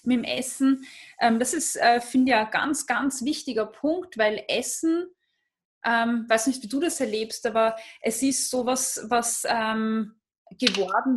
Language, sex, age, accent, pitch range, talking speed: German, female, 20-39, German, 220-260 Hz, 145 wpm